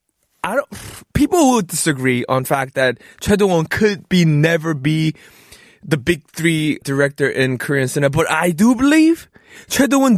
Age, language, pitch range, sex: 20-39, Korean, 160-215 Hz, male